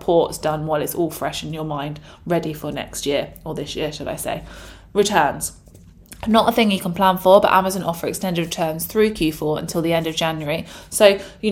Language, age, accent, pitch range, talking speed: English, 20-39, British, 155-185 Hz, 215 wpm